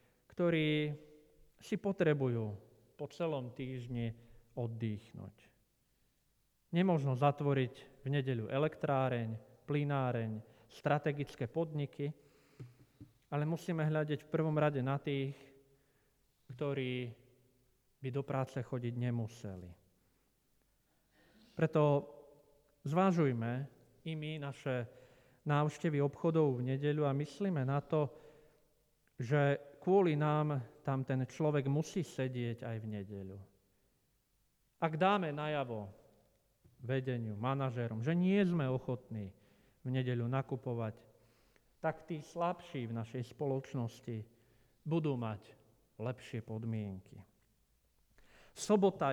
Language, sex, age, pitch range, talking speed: Slovak, male, 40-59, 115-150 Hz, 95 wpm